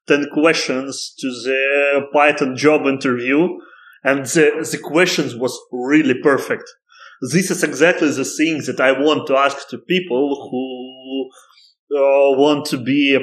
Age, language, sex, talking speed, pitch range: 20-39, English, male, 145 wpm, 130-155 Hz